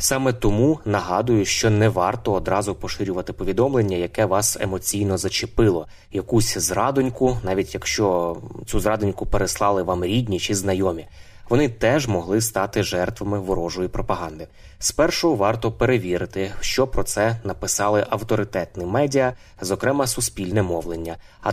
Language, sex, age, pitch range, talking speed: Ukrainian, male, 20-39, 90-110 Hz, 125 wpm